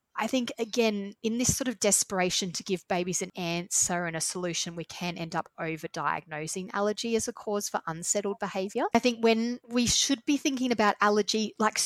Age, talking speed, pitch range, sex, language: 30-49, 190 wpm, 160-200 Hz, female, English